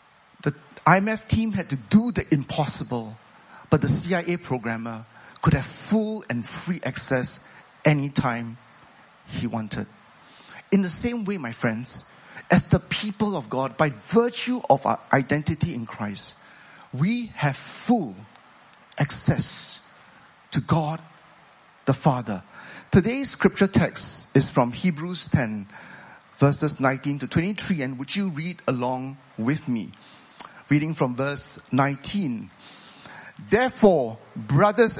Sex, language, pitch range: male, English, 130-185 Hz